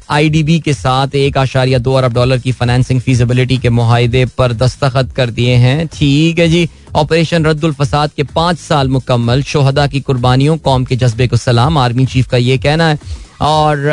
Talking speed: 190 wpm